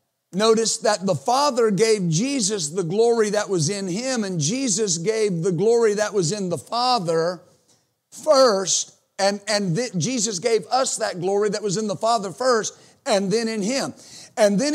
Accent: American